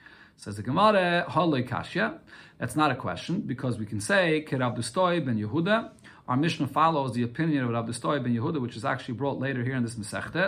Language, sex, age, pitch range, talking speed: English, male, 50-69, 125-170 Hz, 205 wpm